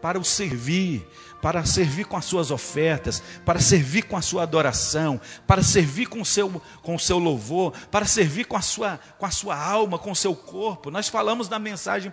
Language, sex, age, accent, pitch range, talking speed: Portuguese, male, 50-69, Brazilian, 165-240 Hz, 185 wpm